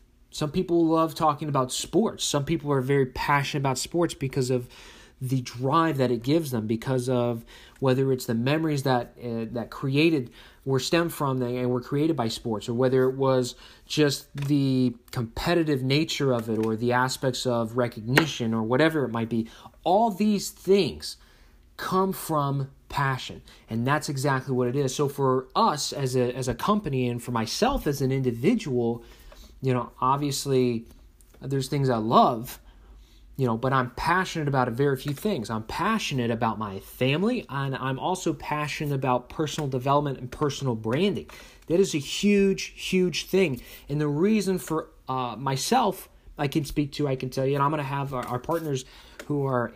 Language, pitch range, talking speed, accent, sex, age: English, 125-150 Hz, 175 wpm, American, male, 30-49